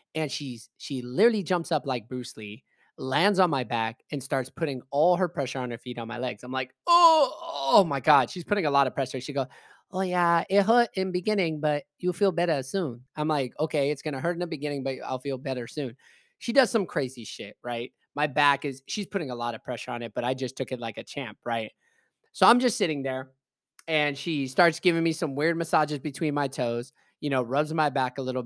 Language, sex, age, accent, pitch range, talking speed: English, male, 20-39, American, 130-175 Hz, 245 wpm